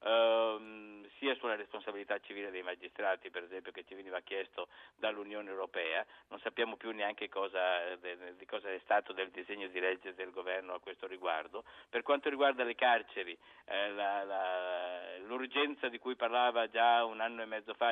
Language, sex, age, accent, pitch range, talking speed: Italian, male, 50-69, native, 95-130 Hz, 170 wpm